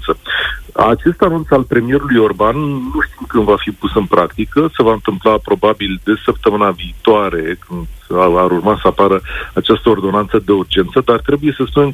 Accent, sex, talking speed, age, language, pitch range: native, male, 170 wpm, 40-59, Romanian, 100-140 Hz